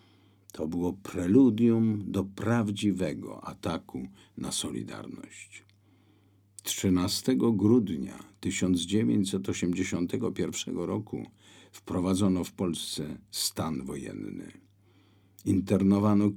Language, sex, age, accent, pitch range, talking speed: Polish, male, 50-69, native, 95-105 Hz, 65 wpm